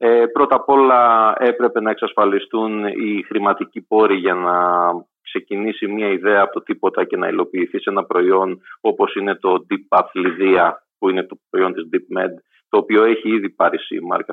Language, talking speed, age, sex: Greek, 185 wpm, 30-49, male